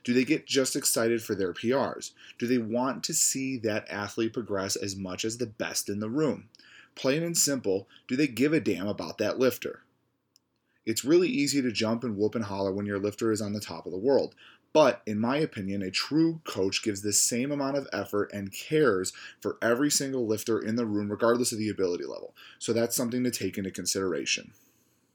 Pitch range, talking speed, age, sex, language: 105-130 Hz, 210 wpm, 30-49, male, English